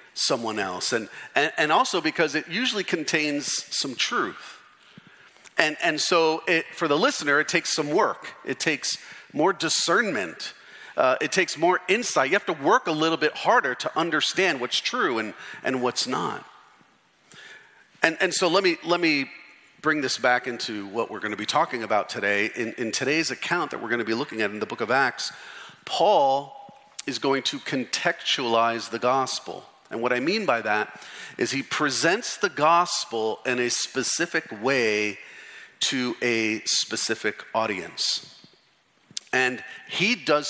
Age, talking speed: 40-59, 165 wpm